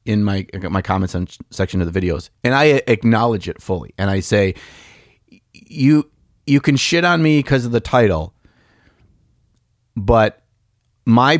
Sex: male